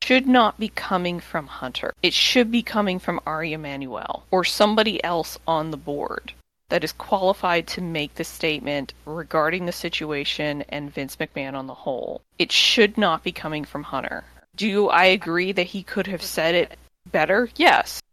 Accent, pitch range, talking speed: American, 165-220 Hz, 175 wpm